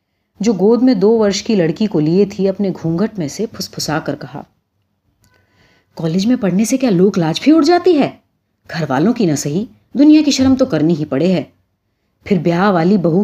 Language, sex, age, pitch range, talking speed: Urdu, female, 30-49, 150-225 Hz, 200 wpm